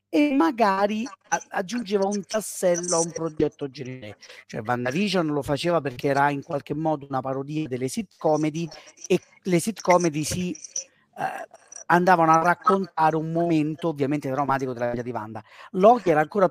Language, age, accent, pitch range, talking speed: Italian, 40-59, native, 135-180 Hz, 150 wpm